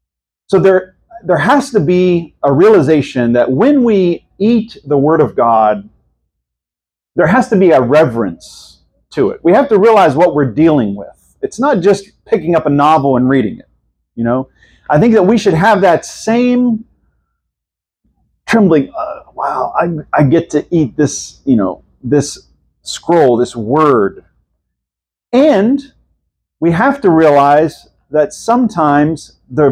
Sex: male